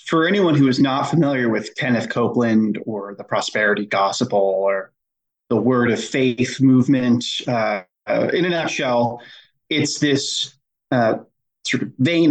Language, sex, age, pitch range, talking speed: English, male, 30-49, 120-135 Hz, 145 wpm